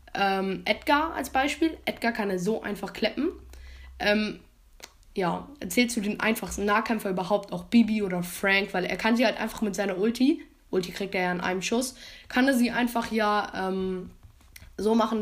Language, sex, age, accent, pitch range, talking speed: German, female, 20-39, German, 190-230 Hz, 180 wpm